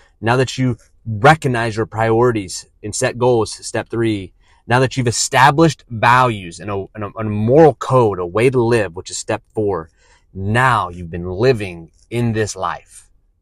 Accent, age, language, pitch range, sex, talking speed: American, 30-49, English, 85-115 Hz, male, 165 wpm